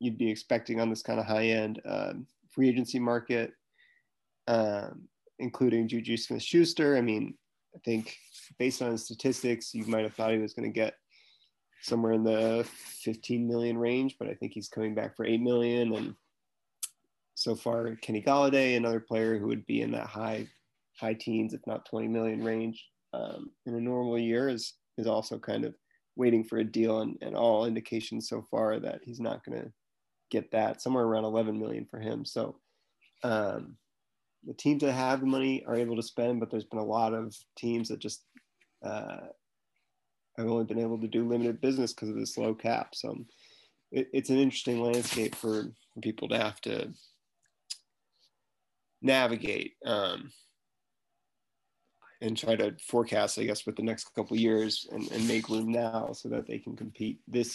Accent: American